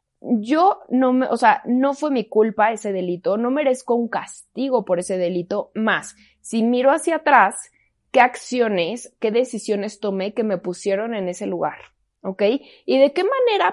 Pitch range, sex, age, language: 195-260 Hz, female, 20-39, Spanish